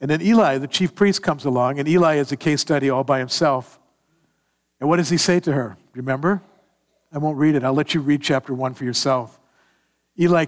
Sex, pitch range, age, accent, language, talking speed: male, 95-150 Hz, 60-79, American, English, 220 wpm